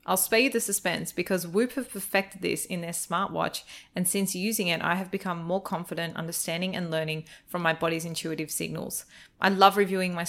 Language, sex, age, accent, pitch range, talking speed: English, female, 20-39, Australian, 165-190 Hz, 200 wpm